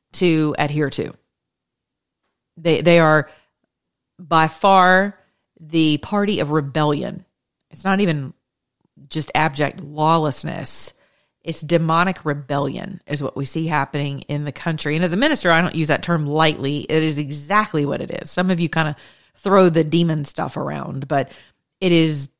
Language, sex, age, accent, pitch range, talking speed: English, female, 40-59, American, 140-170 Hz, 155 wpm